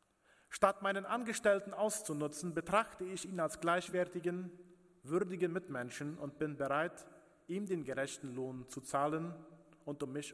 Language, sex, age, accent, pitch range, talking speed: German, male, 40-59, German, 145-185 Hz, 135 wpm